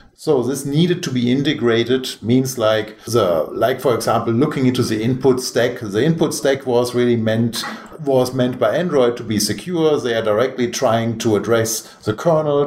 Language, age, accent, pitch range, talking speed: English, 50-69, German, 115-150 Hz, 180 wpm